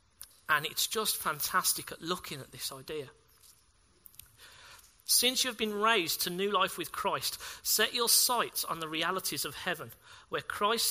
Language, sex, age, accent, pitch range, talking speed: English, male, 40-59, British, 160-215 Hz, 155 wpm